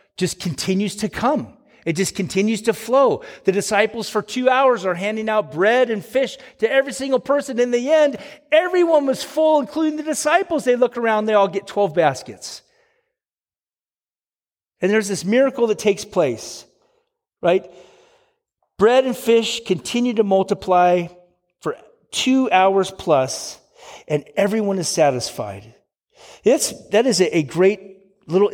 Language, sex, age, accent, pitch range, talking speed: English, male, 40-59, American, 185-255 Hz, 145 wpm